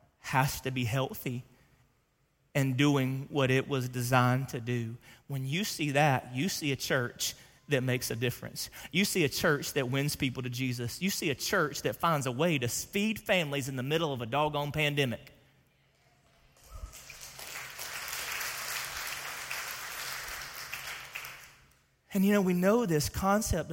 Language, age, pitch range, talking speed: English, 30-49, 130-185 Hz, 145 wpm